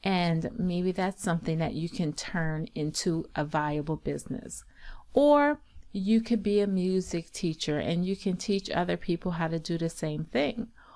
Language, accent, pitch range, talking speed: English, American, 170-250 Hz, 170 wpm